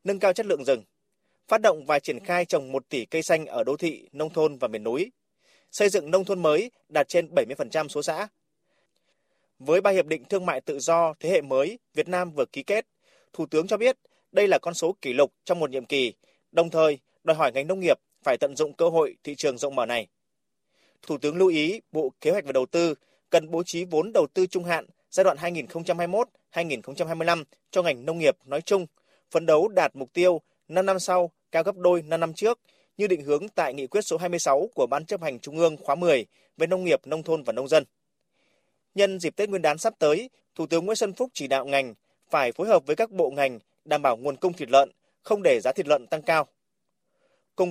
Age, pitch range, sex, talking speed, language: 20-39, 150-195 Hz, male, 230 wpm, Vietnamese